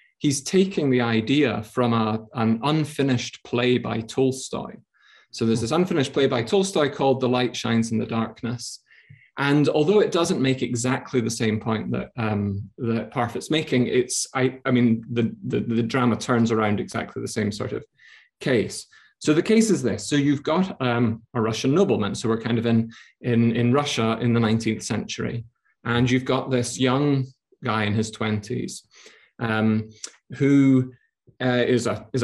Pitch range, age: 110-130 Hz, 30-49